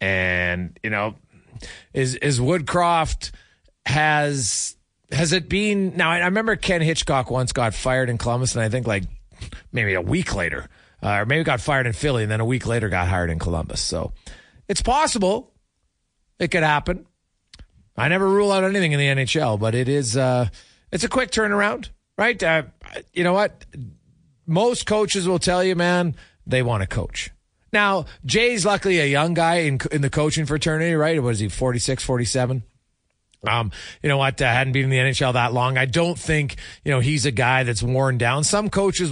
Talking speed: 190 wpm